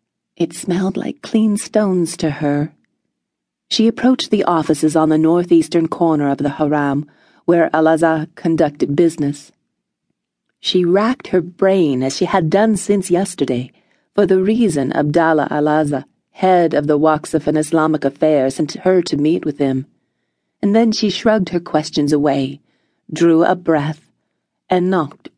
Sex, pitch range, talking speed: female, 145-180 Hz, 145 wpm